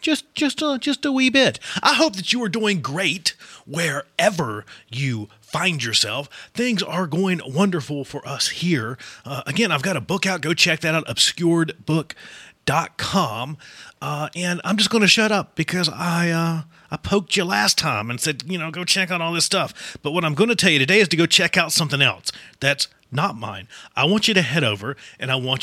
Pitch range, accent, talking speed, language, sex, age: 125-185 Hz, American, 210 wpm, English, male, 30-49